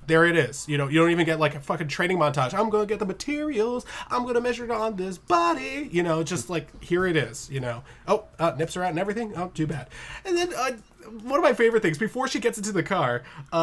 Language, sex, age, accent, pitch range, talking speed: English, male, 20-39, American, 155-220 Hz, 260 wpm